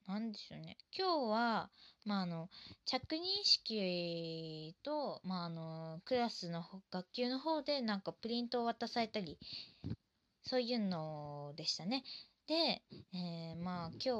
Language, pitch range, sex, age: Japanese, 170-235 Hz, female, 20-39